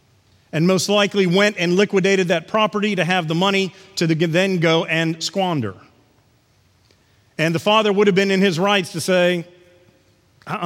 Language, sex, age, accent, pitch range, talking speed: English, male, 40-59, American, 135-200 Hz, 165 wpm